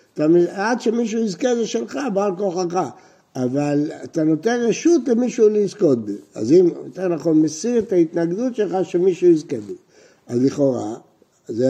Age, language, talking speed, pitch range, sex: 60-79, Hebrew, 140 wpm, 145-205 Hz, male